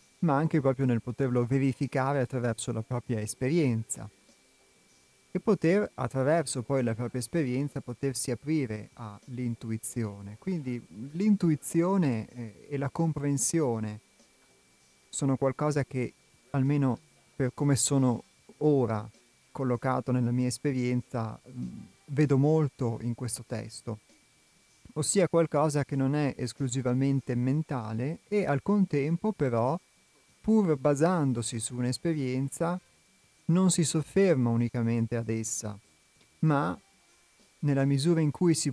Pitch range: 120-145 Hz